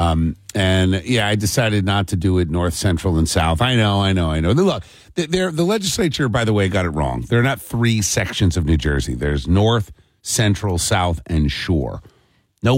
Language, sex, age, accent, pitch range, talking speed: English, male, 50-69, American, 90-115 Hz, 200 wpm